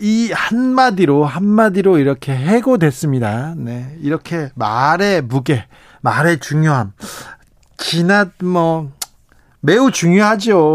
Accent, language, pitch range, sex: native, Korean, 130-175 Hz, male